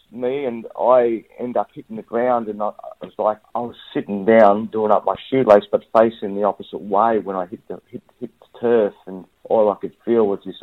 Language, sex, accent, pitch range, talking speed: English, male, Australian, 100-115 Hz, 230 wpm